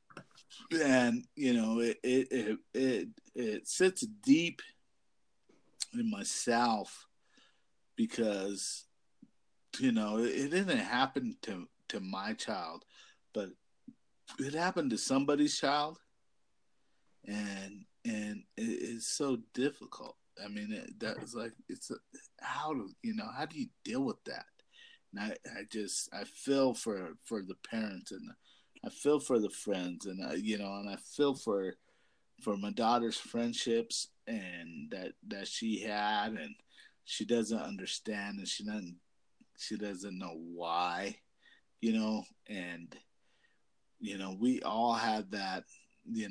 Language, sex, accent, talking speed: English, male, American, 140 wpm